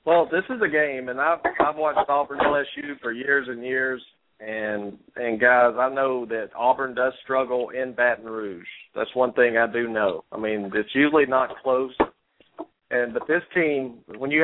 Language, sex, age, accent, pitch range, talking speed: English, male, 50-69, American, 110-135 Hz, 195 wpm